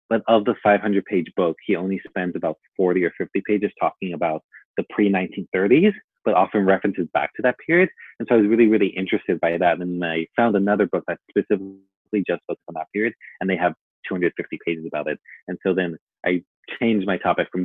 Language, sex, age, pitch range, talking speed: English, male, 30-49, 85-100 Hz, 205 wpm